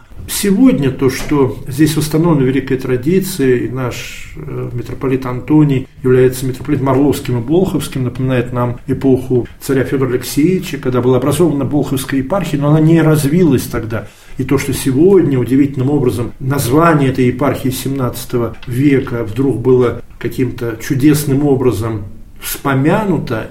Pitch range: 125-145 Hz